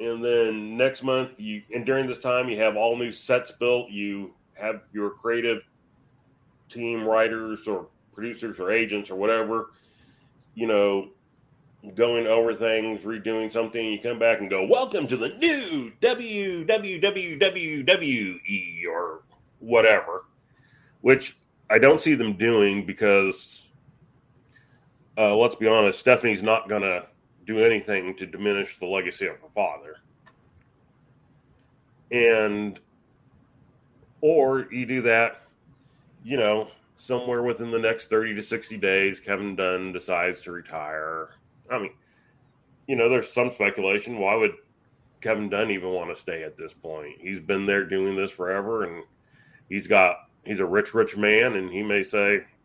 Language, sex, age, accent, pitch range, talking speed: English, male, 40-59, American, 105-130 Hz, 145 wpm